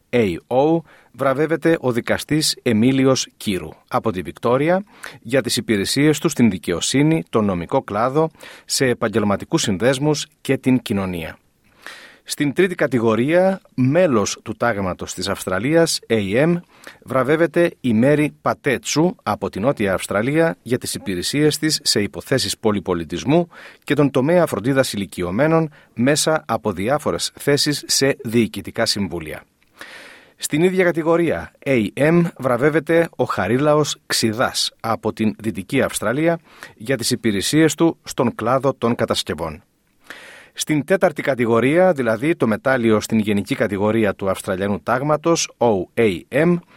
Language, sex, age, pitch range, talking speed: Greek, male, 40-59, 110-160 Hz, 120 wpm